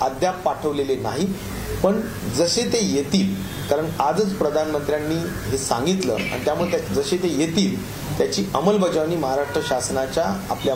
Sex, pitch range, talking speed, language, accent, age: male, 140-210 Hz, 60 wpm, Marathi, native, 40-59